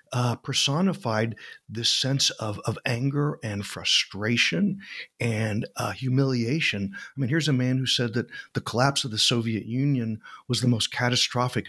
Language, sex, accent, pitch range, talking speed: English, male, American, 115-140 Hz, 155 wpm